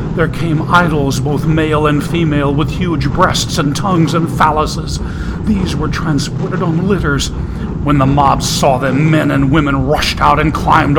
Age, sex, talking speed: 40-59, male, 170 wpm